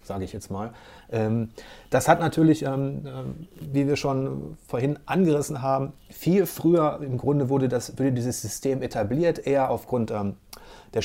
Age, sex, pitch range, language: 30-49, male, 110-145 Hz, German